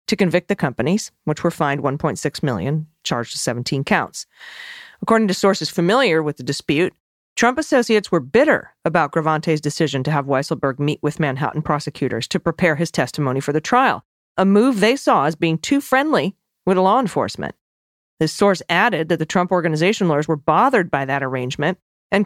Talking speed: 180 wpm